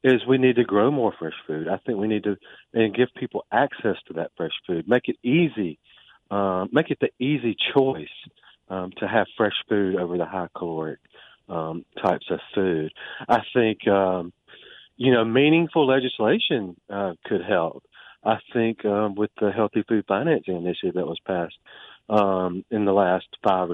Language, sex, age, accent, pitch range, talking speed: English, male, 40-59, American, 95-120 Hz, 175 wpm